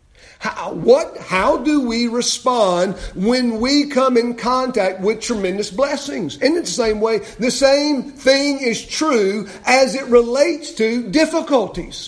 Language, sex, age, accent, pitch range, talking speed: English, male, 50-69, American, 160-255 Hz, 140 wpm